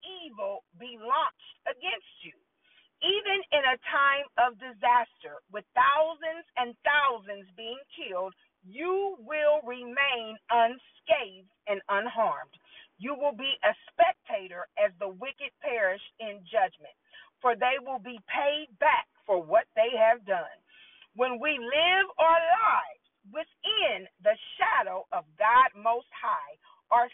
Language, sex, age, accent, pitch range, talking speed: English, female, 40-59, American, 225-325 Hz, 125 wpm